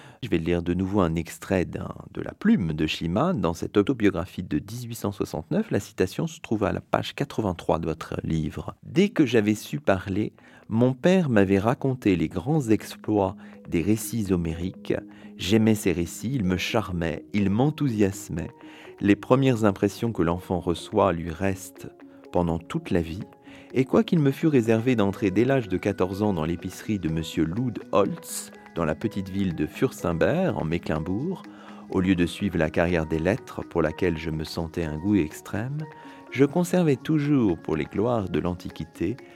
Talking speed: 175 wpm